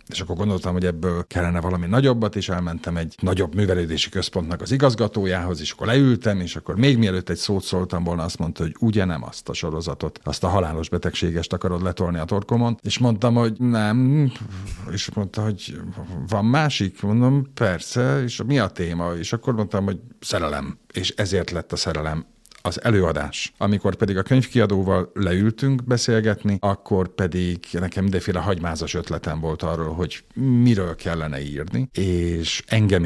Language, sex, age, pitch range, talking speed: Hungarian, male, 50-69, 85-110 Hz, 160 wpm